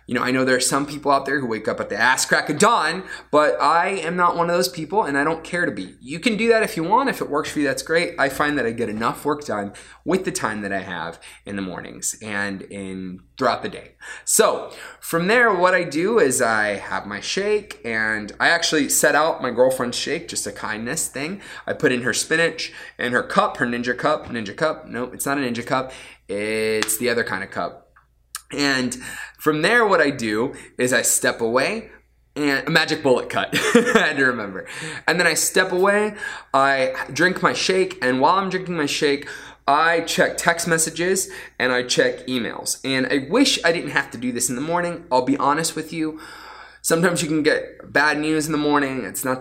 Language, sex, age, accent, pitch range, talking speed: English, male, 20-39, American, 120-170 Hz, 225 wpm